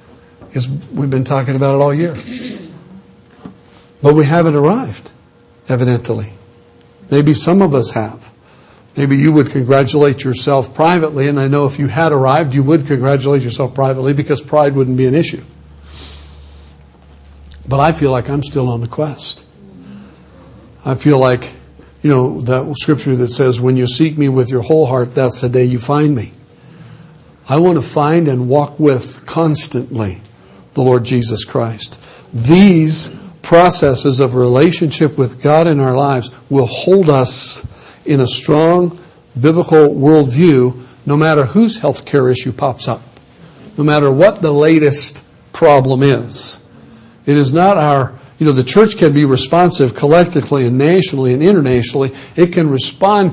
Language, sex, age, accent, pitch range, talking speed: English, male, 60-79, American, 125-155 Hz, 155 wpm